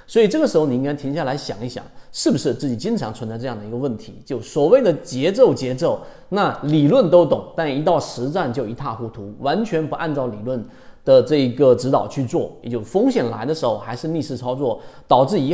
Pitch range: 115-165 Hz